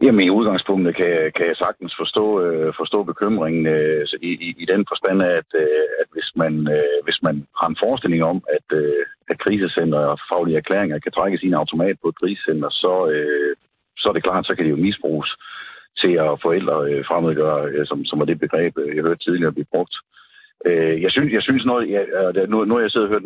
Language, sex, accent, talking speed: Danish, male, native, 220 wpm